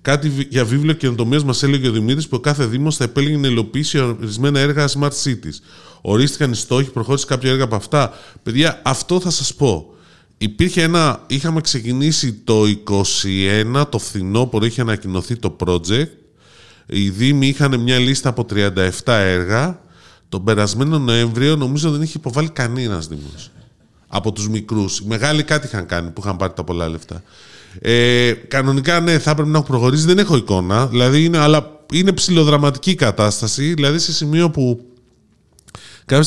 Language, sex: Greek, male